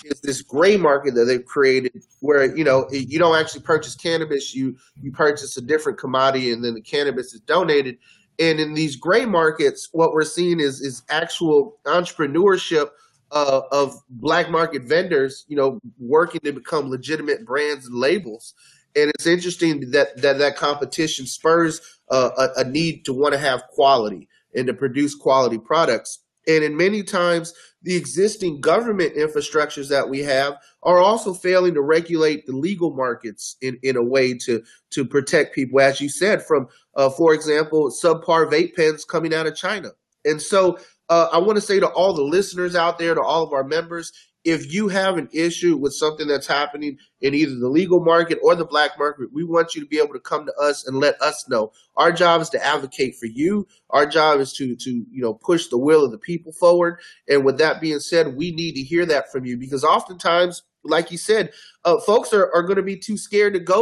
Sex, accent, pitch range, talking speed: male, American, 140-175 Hz, 200 wpm